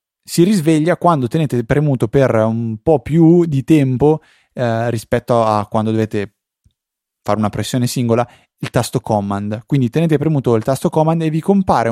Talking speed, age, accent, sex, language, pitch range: 160 wpm, 20-39, native, male, Italian, 110-145 Hz